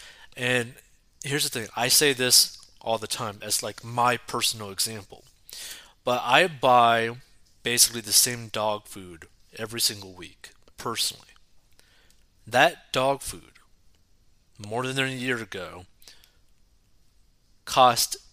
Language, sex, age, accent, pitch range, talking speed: English, male, 30-49, American, 105-140 Hz, 120 wpm